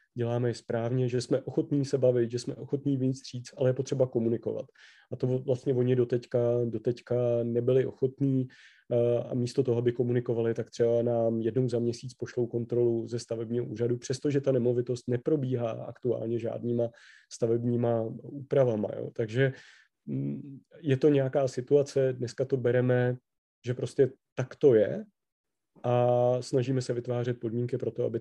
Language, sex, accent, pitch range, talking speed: Czech, male, native, 120-135 Hz, 145 wpm